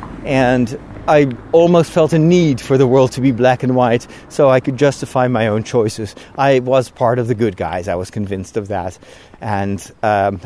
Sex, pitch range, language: male, 110-145 Hz, English